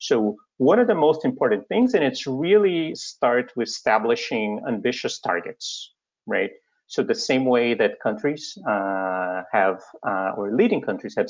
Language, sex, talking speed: English, male, 155 wpm